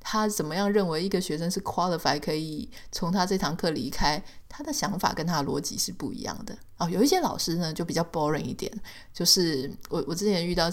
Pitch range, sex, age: 160-205 Hz, female, 20-39